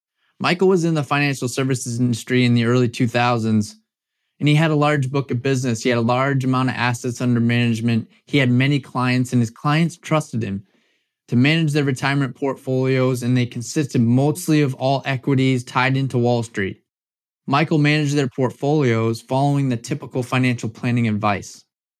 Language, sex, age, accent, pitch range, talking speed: English, male, 20-39, American, 115-135 Hz, 170 wpm